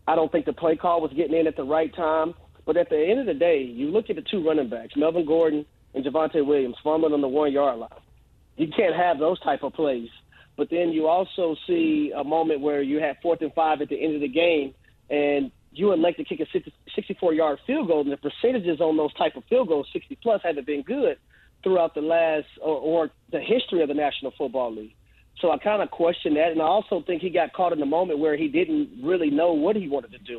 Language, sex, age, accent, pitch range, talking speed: English, male, 40-59, American, 150-185 Hz, 245 wpm